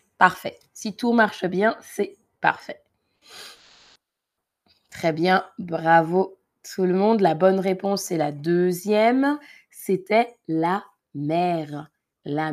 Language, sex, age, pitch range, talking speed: French, female, 20-39, 160-220 Hz, 110 wpm